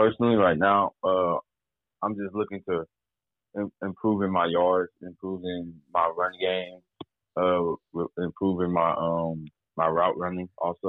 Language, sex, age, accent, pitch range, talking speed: English, male, 20-39, American, 85-100 Hz, 140 wpm